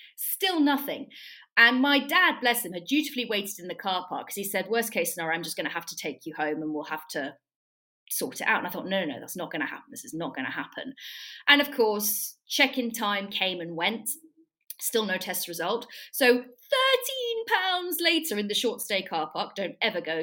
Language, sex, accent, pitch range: English, female, British, 190-285 Hz